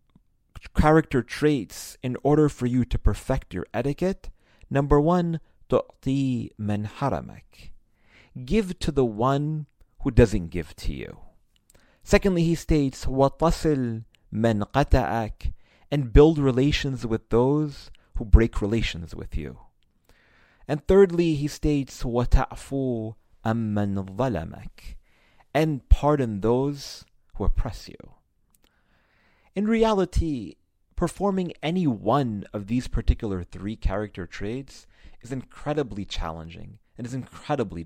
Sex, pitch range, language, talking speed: male, 105-150 Hz, English, 95 wpm